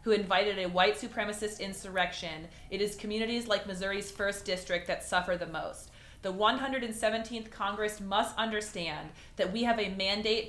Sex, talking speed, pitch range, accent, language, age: female, 155 wpm, 175-210 Hz, American, English, 30-49